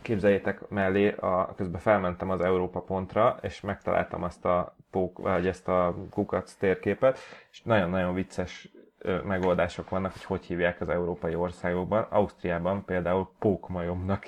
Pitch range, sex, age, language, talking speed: 95-110 Hz, male, 30-49, Hungarian, 140 wpm